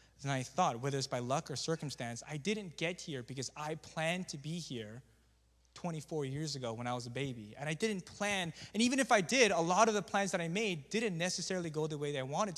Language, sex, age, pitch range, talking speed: English, male, 20-39, 145-205 Hz, 250 wpm